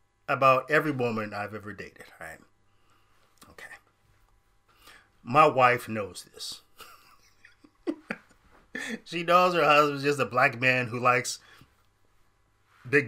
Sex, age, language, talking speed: male, 30-49, English, 110 wpm